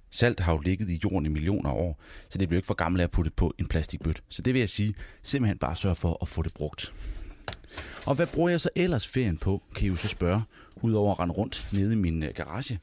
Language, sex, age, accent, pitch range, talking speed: Danish, male, 30-49, native, 85-105 Hz, 265 wpm